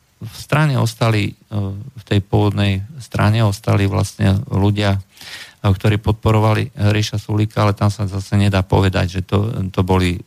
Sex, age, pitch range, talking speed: male, 40-59, 95-110 Hz, 140 wpm